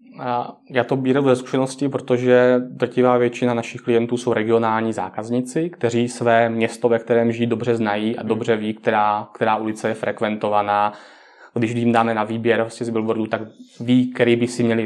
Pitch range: 115-125 Hz